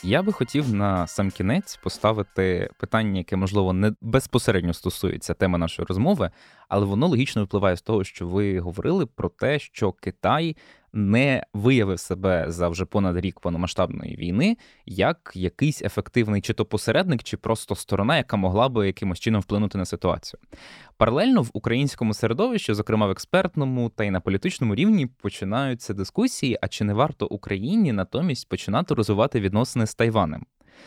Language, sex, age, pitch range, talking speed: Ukrainian, male, 20-39, 95-120 Hz, 155 wpm